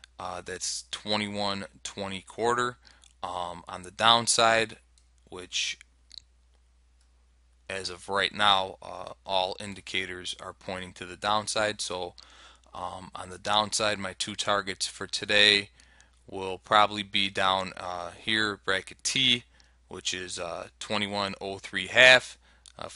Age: 20-39